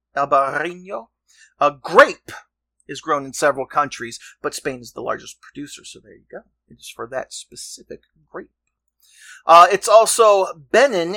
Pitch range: 140-210 Hz